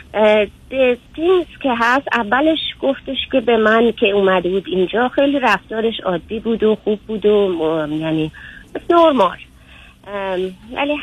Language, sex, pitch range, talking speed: Persian, female, 175-230 Hz, 125 wpm